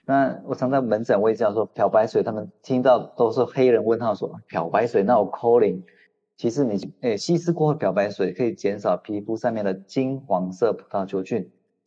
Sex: male